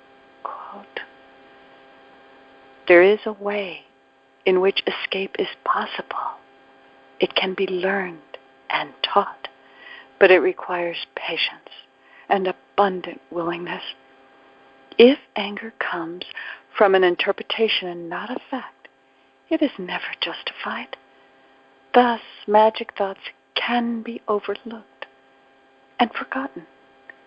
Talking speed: 100 wpm